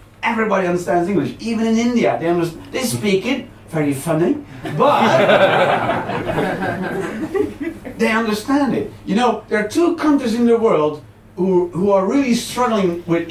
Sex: male